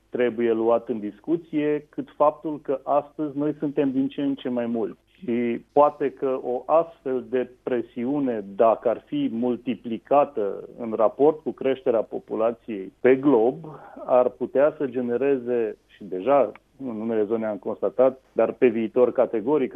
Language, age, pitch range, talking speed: Romanian, 30-49, 115-135 Hz, 145 wpm